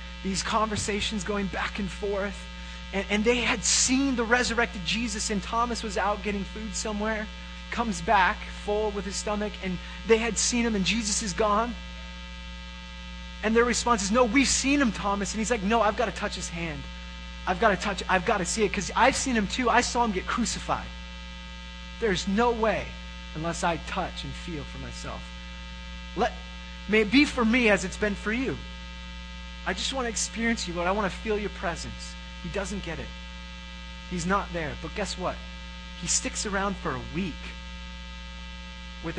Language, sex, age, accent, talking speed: English, male, 30-49, American, 190 wpm